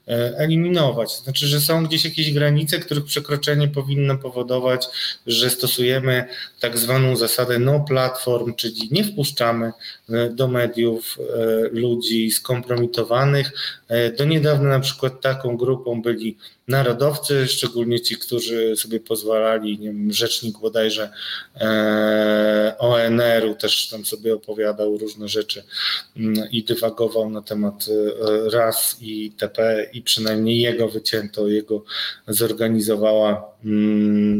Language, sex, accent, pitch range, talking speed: Polish, male, native, 110-135 Hz, 110 wpm